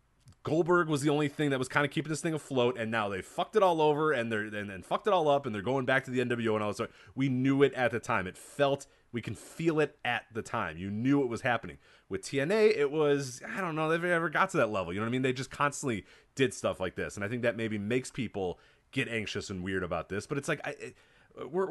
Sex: male